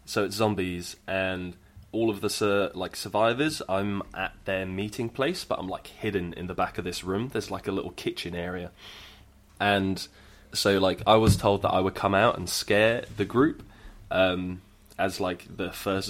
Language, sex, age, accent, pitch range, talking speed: English, male, 20-39, British, 90-100 Hz, 185 wpm